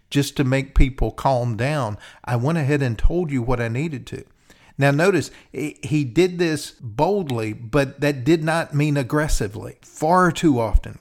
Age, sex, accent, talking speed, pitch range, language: 50-69, male, American, 170 wpm, 120-150 Hz, English